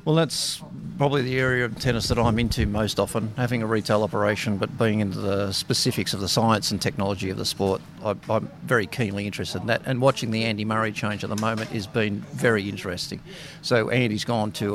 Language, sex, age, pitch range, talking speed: English, male, 50-69, 100-125 Hz, 210 wpm